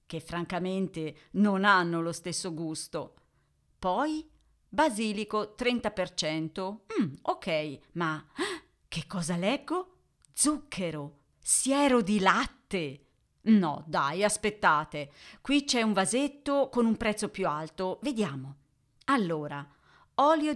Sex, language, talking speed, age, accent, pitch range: female, Italian, 100 wpm, 40-59, native, 165-260 Hz